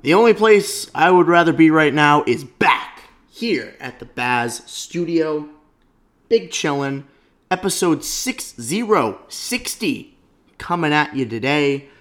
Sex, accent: male, American